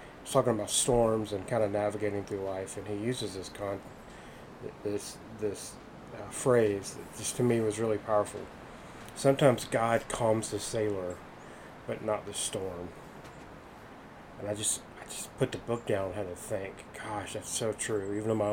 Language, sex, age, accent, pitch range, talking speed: English, male, 30-49, American, 100-110 Hz, 170 wpm